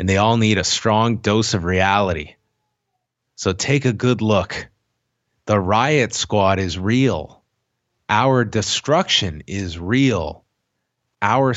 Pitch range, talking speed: 100-125 Hz, 125 wpm